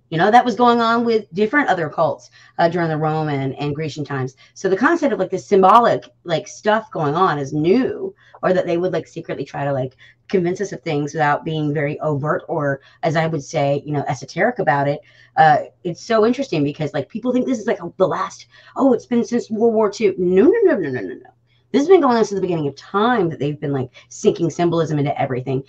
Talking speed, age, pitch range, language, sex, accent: 240 wpm, 30-49, 140-195 Hz, English, female, American